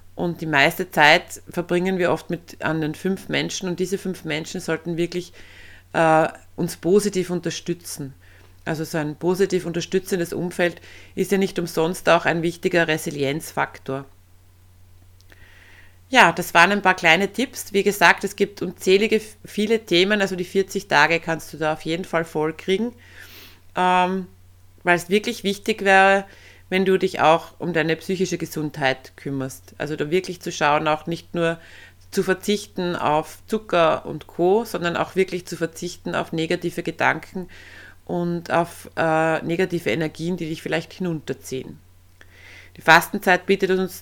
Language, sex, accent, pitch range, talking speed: German, female, German, 150-185 Hz, 150 wpm